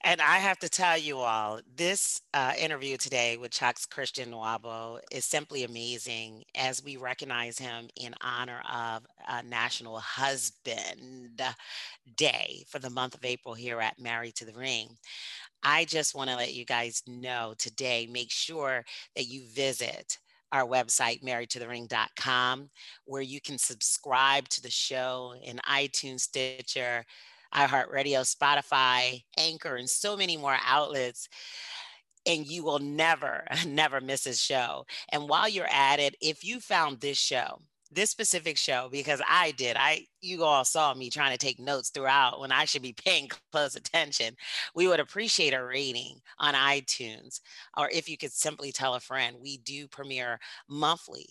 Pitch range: 120-145 Hz